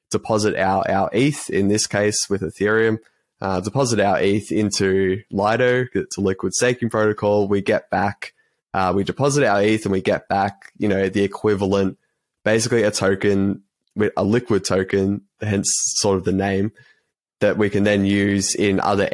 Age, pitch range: 20-39, 95-105 Hz